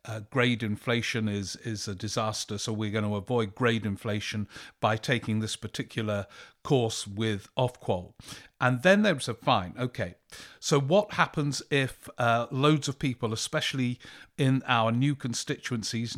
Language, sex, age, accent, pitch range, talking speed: English, male, 50-69, British, 110-140 Hz, 150 wpm